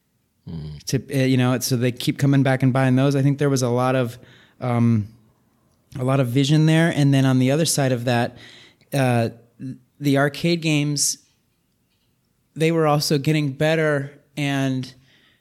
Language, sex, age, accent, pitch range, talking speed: English, male, 30-49, American, 125-140 Hz, 165 wpm